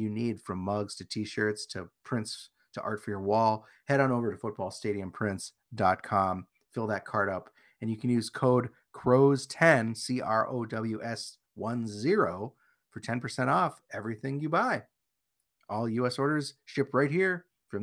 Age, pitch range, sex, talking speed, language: 40-59, 110-140 Hz, male, 155 wpm, English